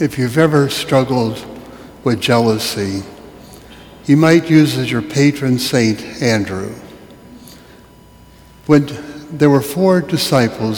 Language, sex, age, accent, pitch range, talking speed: English, male, 60-79, American, 110-140 Hz, 105 wpm